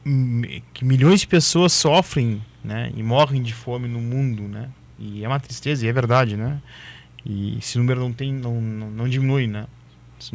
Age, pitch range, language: 20-39, 115-140 Hz, Portuguese